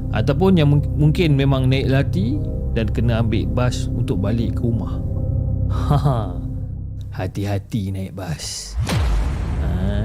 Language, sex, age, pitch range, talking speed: Malay, male, 20-39, 110-150 Hz, 125 wpm